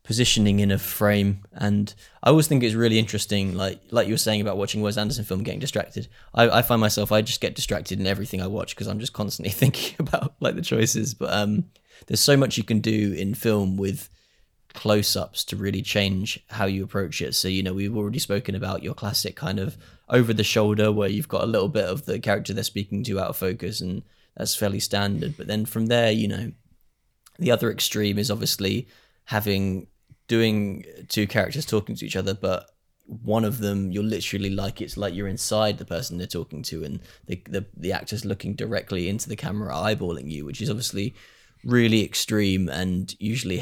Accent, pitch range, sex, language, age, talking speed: British, 95-110 Hz, male, English, 10-29, 205 wpm